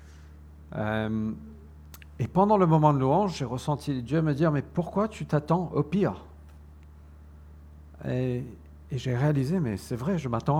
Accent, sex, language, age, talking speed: French, male, French, 50-69, 165 wpm